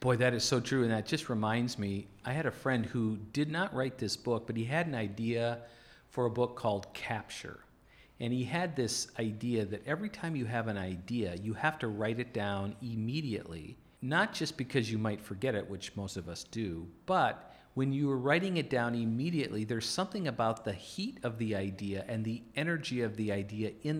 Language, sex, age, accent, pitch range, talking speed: English, male, 50-69, American, 110-140 Hz, 210 wpm